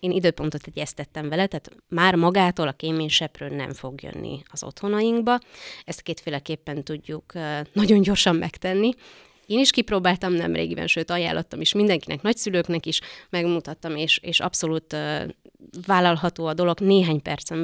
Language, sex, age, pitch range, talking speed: Hungarian, female, 30-49, 150-195 Hz, 135 wpm